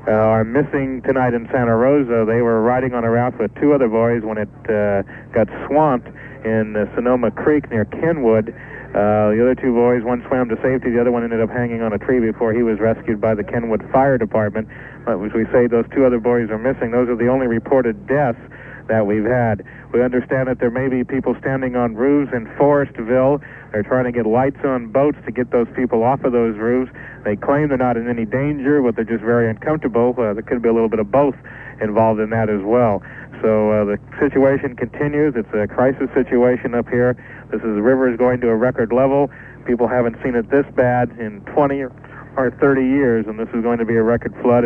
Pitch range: 115-135 Hz